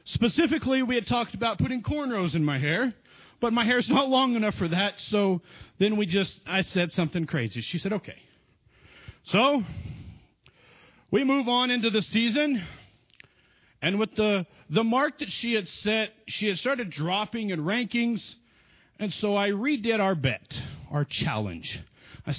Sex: male